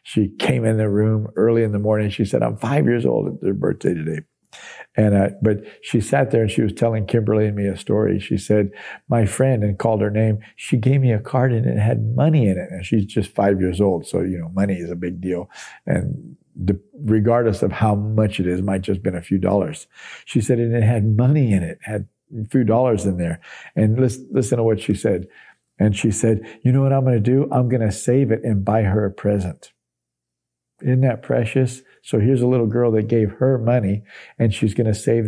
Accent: American